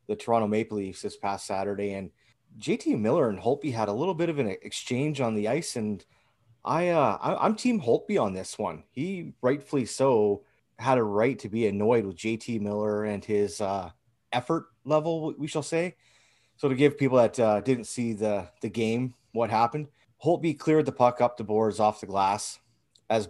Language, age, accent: English, 30-49, American